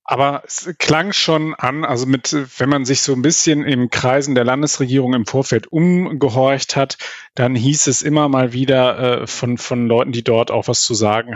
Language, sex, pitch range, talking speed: German, male, 120-140 Hz, 195 wpm